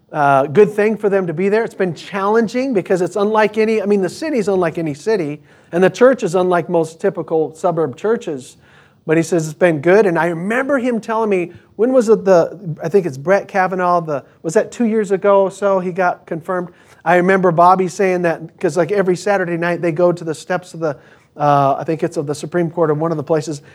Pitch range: 165-210 Hz